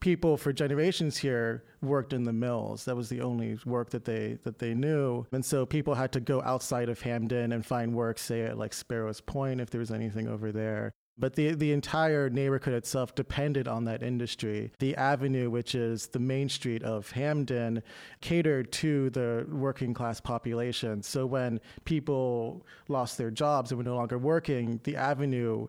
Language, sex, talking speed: English, male, 185 wpm